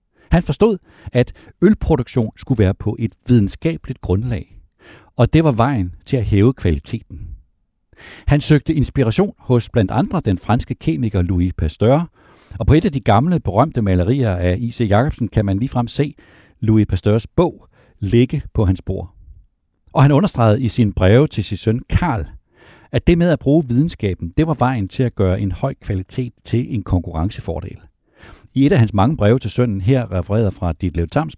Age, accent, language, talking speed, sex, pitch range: 60-79, native, Danish, 175 wpm, male, 95-130 Hz